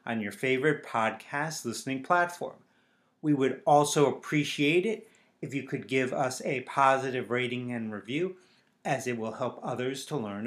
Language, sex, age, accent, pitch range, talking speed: English, male, 30-49, American, 125-155 Hz, 160 wpm